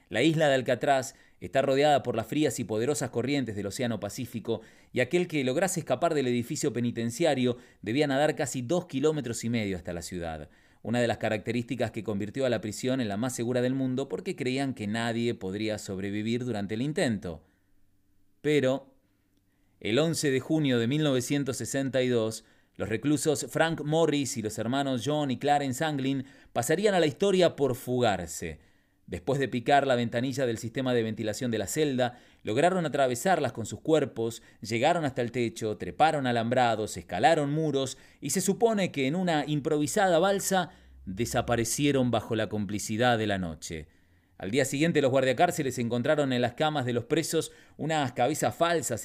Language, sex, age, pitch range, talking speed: Spanish, male, 30-49, 110-145 Hz, 165 wpm